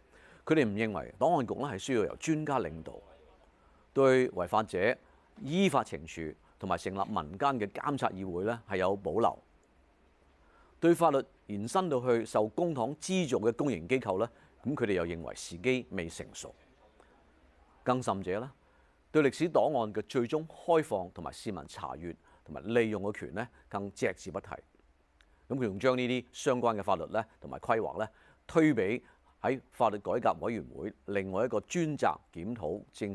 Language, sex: Chinese, male